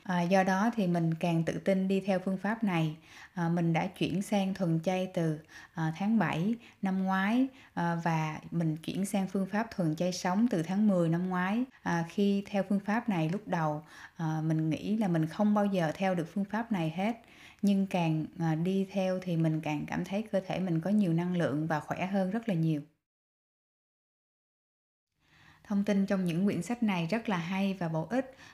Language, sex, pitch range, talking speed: Vietnamese, female, 165-200 Hz, 210 wpm